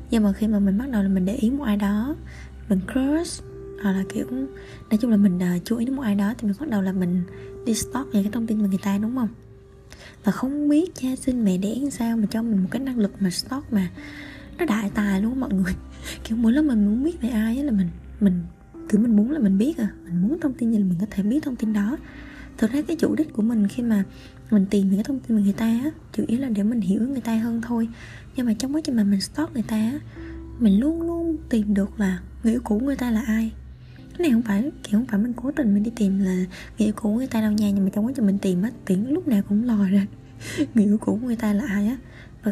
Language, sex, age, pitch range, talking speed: Vietnamese, female, 20-39, 200-255 Hz, 280 wpm